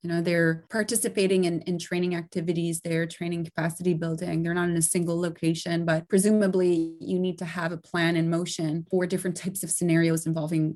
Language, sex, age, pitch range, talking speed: English, female, 20-39, 165-185 Hz, 190 wpm